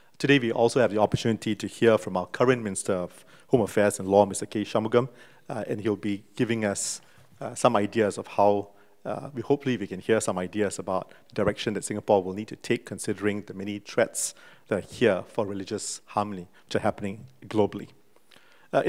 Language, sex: English, male